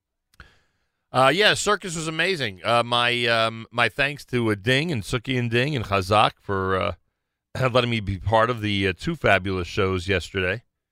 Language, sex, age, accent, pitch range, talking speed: English, male, 40-59, American, 90-110 Hz, 175 wpm